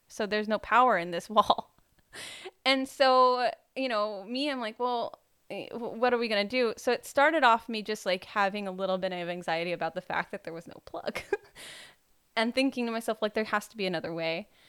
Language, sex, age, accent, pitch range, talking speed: English, female, 10-29, American, 195-245 Hz, 215 wpm